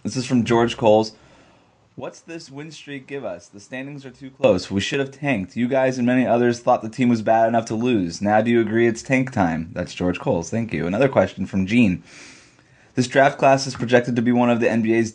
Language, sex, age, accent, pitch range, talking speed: English, male, 20-39, American, 105-125 Hz, 240 wpm